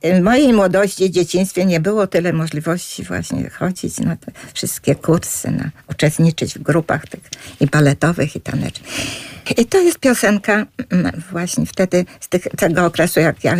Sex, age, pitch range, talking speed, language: female, 50-69, 160-235 Hz, 155 wpm, Polish